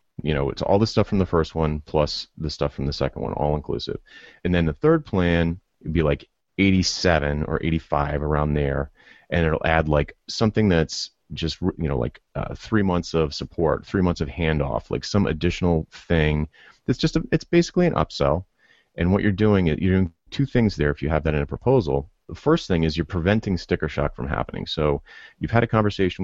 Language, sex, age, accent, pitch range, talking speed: English, male, 30-49, American, 75-100 Hz, 215 wpm